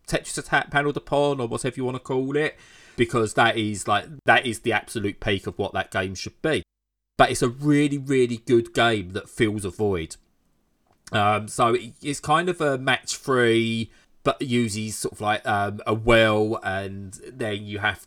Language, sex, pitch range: English, male, 100-120 Hz